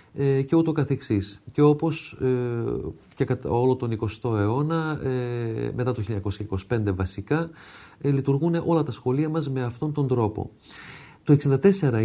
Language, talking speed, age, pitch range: Greek, 145 wpm, 40-59, 110-150 Hz